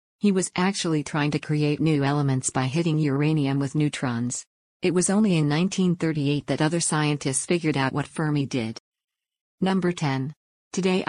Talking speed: 155 wpm